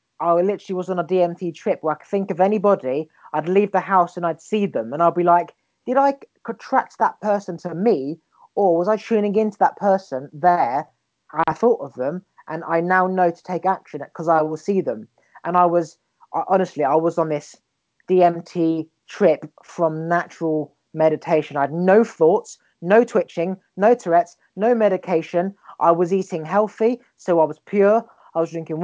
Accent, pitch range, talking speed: British, 160-195 Hz, 185 wpm